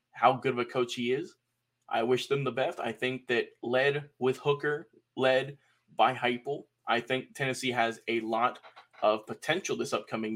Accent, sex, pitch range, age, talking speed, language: American, male, 120-140 Hz, 20-39, 180 wpm, English